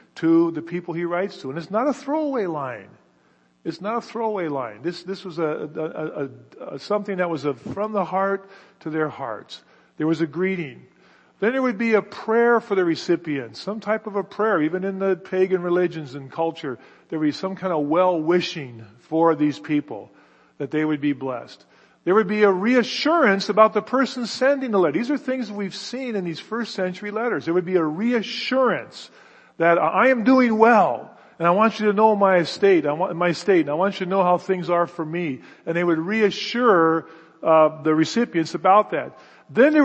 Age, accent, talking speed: 50-69, American, 210 wpm